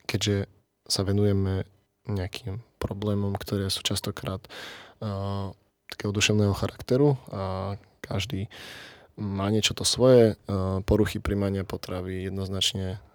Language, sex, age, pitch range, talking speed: Slovak, male, 20-39, 95-110 Hz, 105 wpm